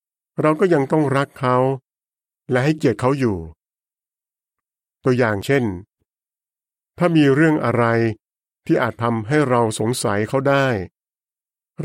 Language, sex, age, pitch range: Thai, male, 60-79, 110-140 Hz